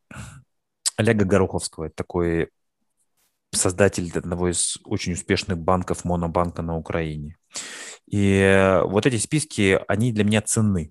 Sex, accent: male, native